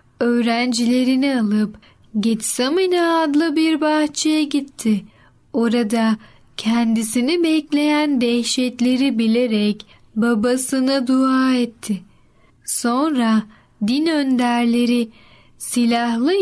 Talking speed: 70 wpm